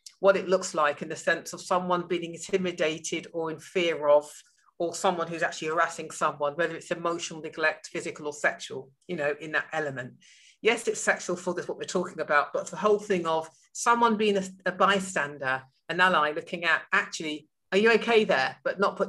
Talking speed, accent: 200 wpm, British